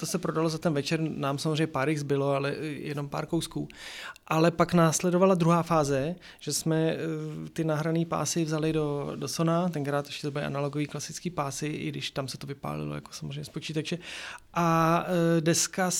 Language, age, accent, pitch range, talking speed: Czech, 30-49, native, 145-170 Hz, 180 wpm